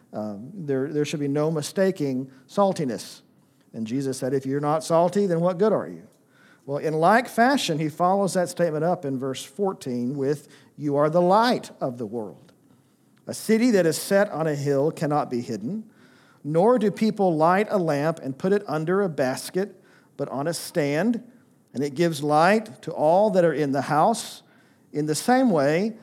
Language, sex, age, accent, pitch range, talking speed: English, male, 50-69, American, 145-185 Hz, 190 wpm